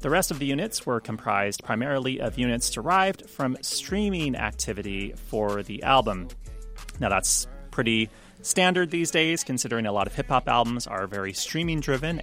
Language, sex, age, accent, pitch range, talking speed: English, male, 30-49, American, 100-135 Hz, 155 wpm